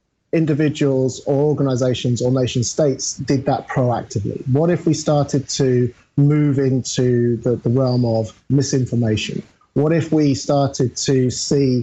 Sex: male